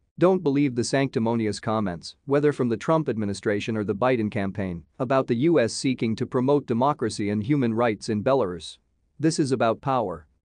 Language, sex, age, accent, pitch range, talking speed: English, male, 40-59, American, 110-140 Hz, 170 wpm